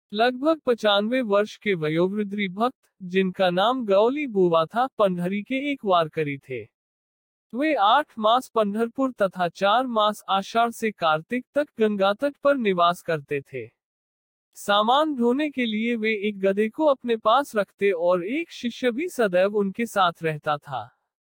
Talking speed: 145 wpm